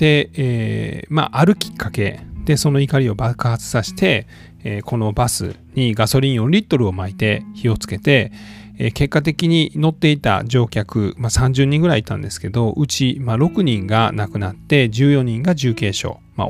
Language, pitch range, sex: Japanese, 100-155 Hz, male